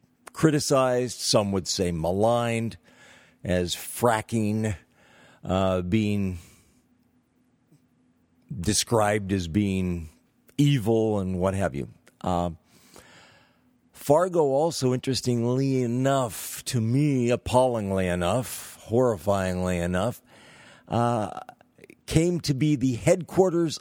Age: 50-69